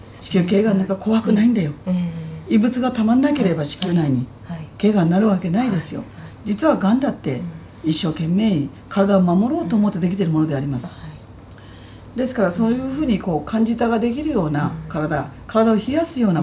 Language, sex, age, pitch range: Japanese, female, 40-59, 155-235 Hz